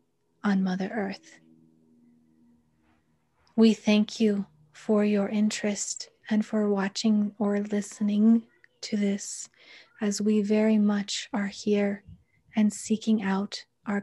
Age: 30-49